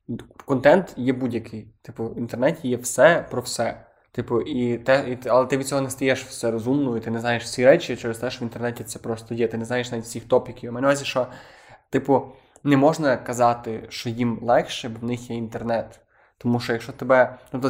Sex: male